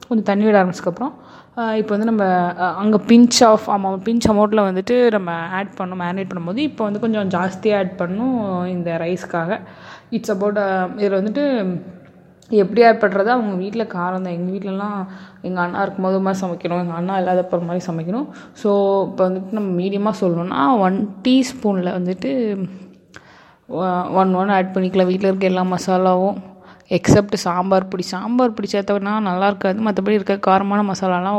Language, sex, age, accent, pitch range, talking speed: Tamil, female, 20-39, native, 180-205 Hz, 150 wpm